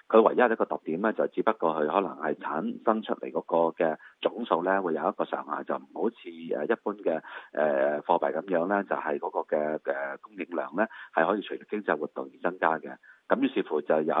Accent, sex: native, male